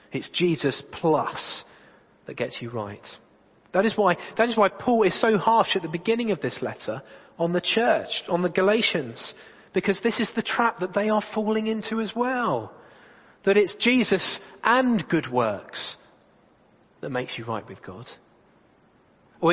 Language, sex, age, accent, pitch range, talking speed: English, male, 40-59, British, 140-210 Hz, 165 wpm